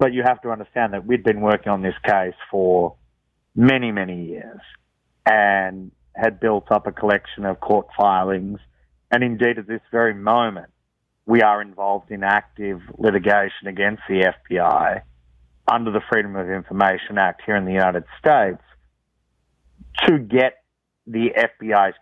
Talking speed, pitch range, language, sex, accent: 150 wpm, 95-115 Hz, English, male, Australian